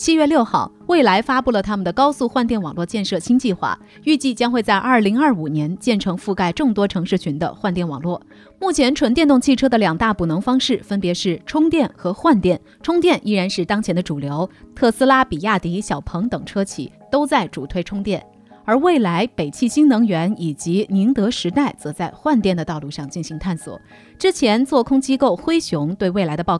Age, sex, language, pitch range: 30-49, female, Chinese, 175-260 Hz